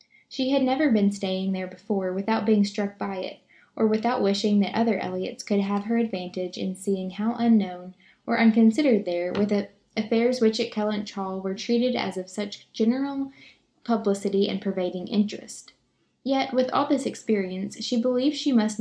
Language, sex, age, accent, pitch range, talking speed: English, female, 10-29, American, 195-240 Hz, 175 wpm